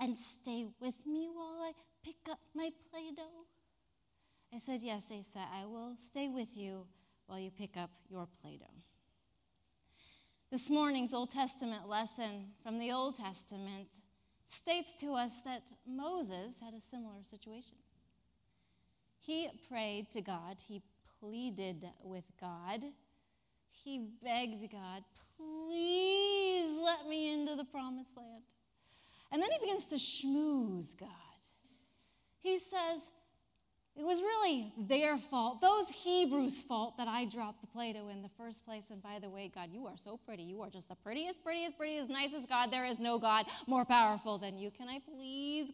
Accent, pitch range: American, 205-295 Hz